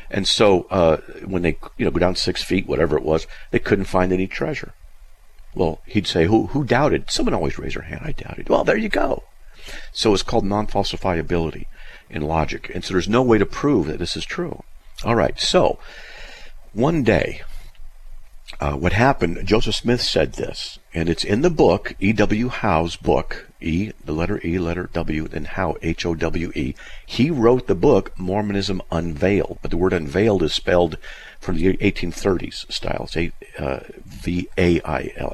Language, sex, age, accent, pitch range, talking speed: English, male, 50-69, American, 80-100 Hz, 180 wpm